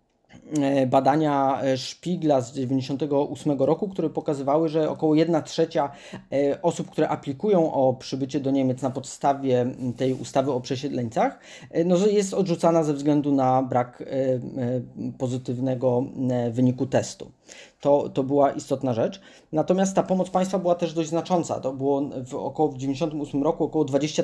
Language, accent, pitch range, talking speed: Polish, native, 135-170 Hz, 135 wpm